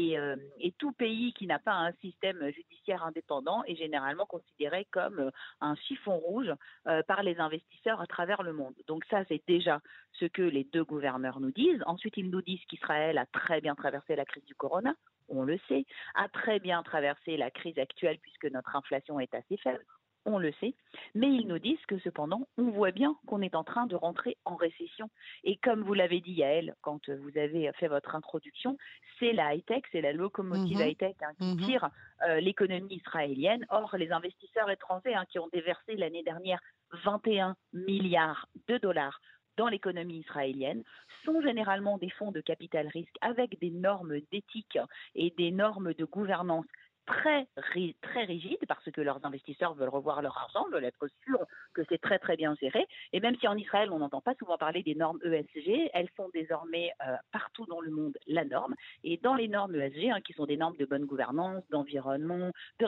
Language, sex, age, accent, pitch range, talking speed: French, female, 40-59, French, 155-215 Hz, 190 wpm